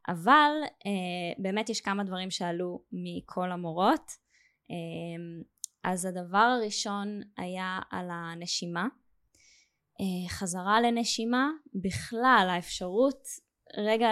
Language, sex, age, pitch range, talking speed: Hebrew, female, 10-29, 180-230 Hz, 95 wpm